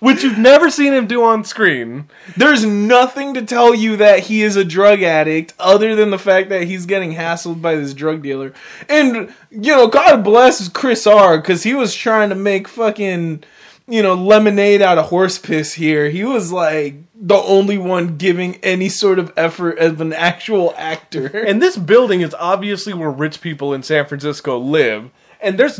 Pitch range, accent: 160-225 Hz, American